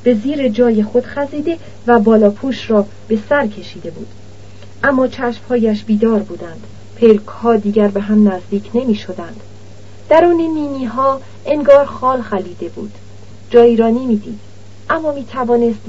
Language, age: Persian, 40-59